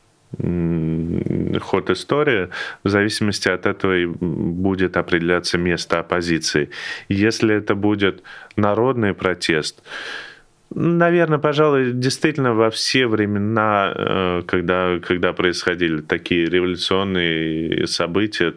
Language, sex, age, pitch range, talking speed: Russian, male, 20-39, 90-115 Hz, 90 wpm